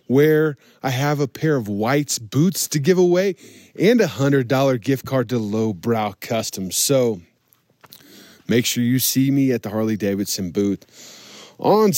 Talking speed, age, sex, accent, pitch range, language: 150 wpm, 20-39, male, American, 120-150 Hz, English